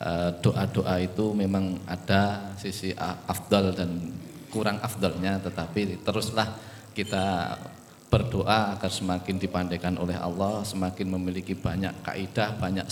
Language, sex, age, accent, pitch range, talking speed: Indonesian, male, 20-39, native, 90-110 Hz, 105 wpm